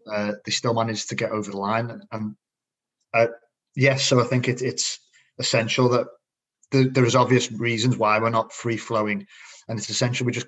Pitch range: 110-125 Hz